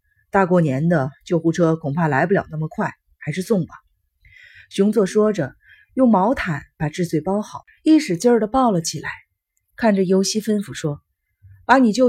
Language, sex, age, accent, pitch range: Chinese, female, 30-49, native, 160-220 Hz